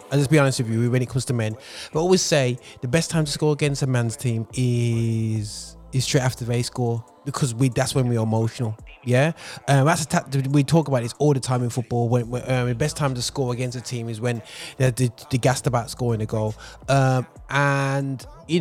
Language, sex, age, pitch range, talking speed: English, male, 20-39, 130-150 Hz, 230 wpm